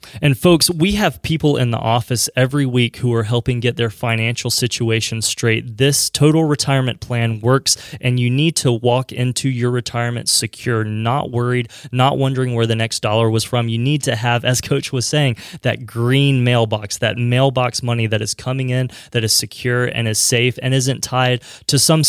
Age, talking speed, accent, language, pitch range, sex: 20-39, 195 wpm, American, English, 120-140 Hz, male